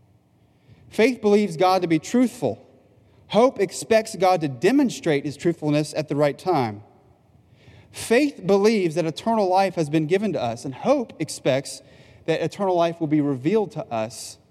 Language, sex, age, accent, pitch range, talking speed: English, male, 30-49, American, 140-190 Hz, 155 wpm